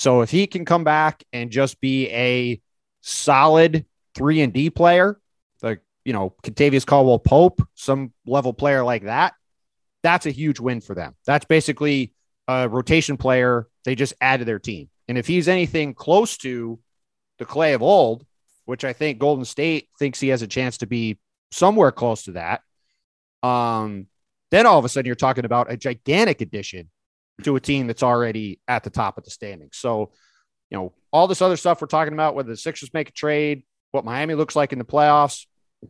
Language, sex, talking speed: English, male, 190 wpm